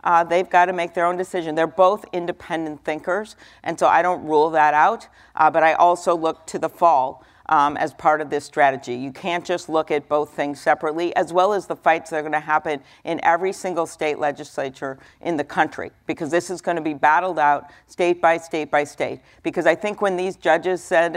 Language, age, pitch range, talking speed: English, 50-69, 155-180 Hz, 220 wpm